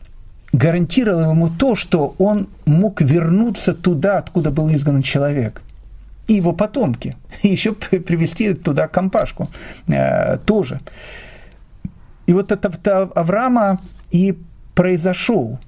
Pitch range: 130-195 Hz